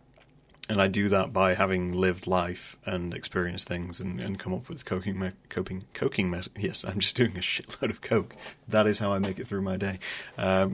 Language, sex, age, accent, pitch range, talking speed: English, male, 30-49, British, 95-125 Hz, 220 wpm